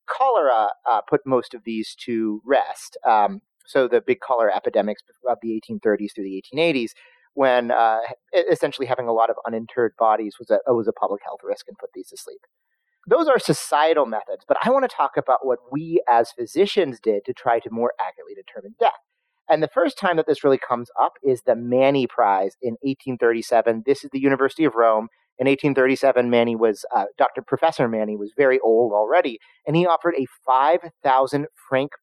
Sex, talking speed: male, 185 wpm